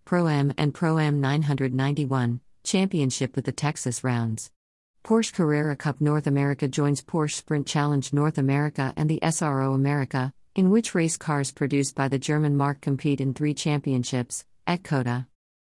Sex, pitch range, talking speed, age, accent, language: female, 130-155 Hz, 160 wpm, 50-69, American, English